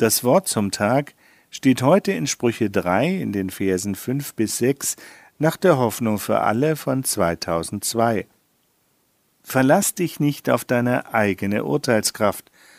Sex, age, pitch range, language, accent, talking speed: male, 50-69, 105-135 Hz, German, German, 135 wpm